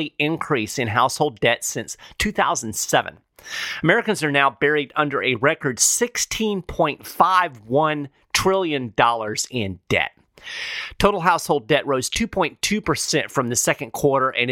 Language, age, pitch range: English, 40-59, 120-160 Hz